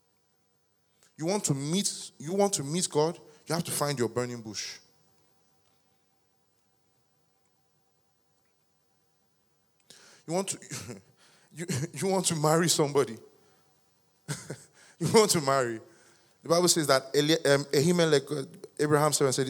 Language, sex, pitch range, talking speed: English, male, 125-170 Hz, 110 wpm